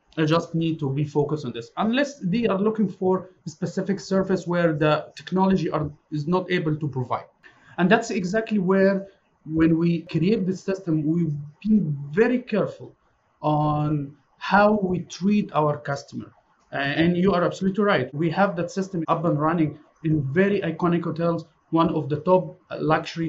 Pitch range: 150-185 Hz